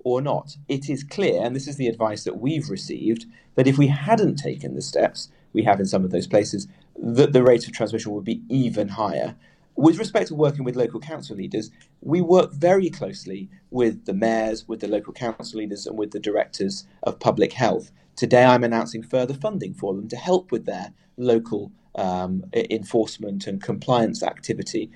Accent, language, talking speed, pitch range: British, English, 190 wpm, 110-145 Hz